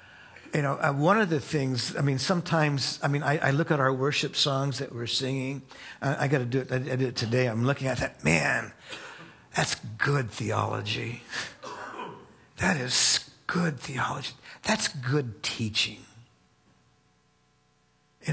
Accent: American